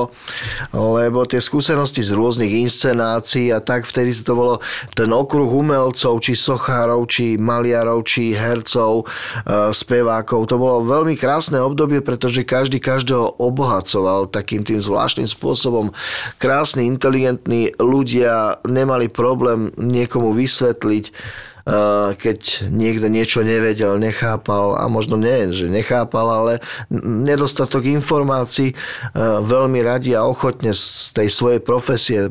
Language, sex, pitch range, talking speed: Slovak, male, 105-125 Hz, 115 wpm